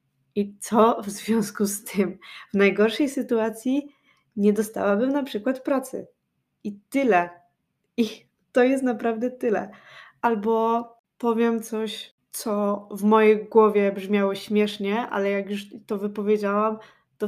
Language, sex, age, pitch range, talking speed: Polish, female, 20-39, 205-245 Hz, 125 wpm